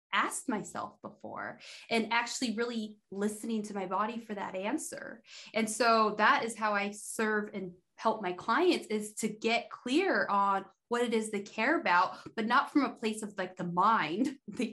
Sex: female